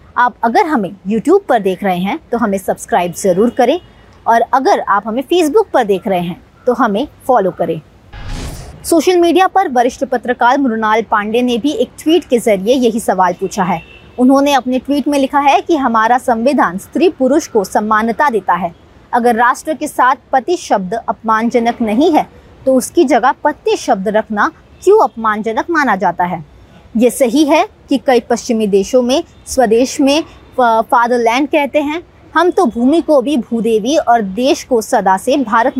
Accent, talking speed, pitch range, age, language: native, 175 wpm, 220-295 Hz, 20-39, Hindi